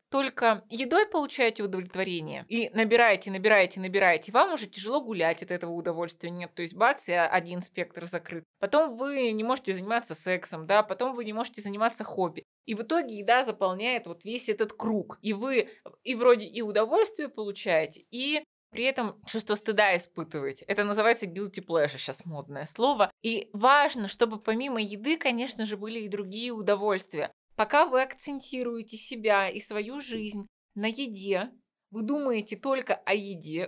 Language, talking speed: Russian, 160 wpm